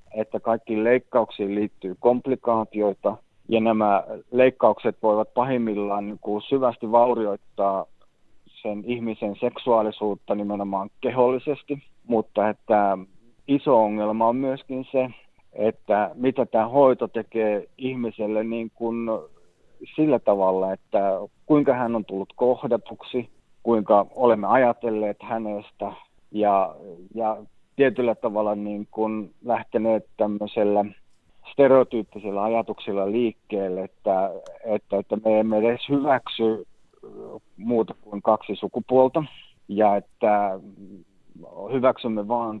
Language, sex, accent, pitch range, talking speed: Finnish, male, native, 105-120 Hz, 100 wpm